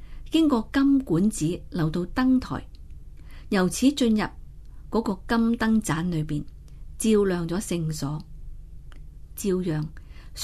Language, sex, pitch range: Chinese, female, 150-225 Hz